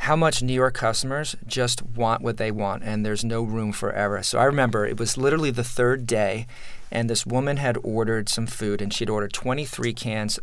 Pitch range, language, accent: 110-135 Hz, English, American